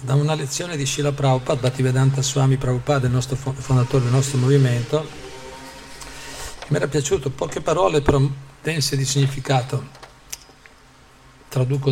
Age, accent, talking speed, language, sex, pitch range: 50-69, native, 125 wpm, Italian, male, 130-140 Hz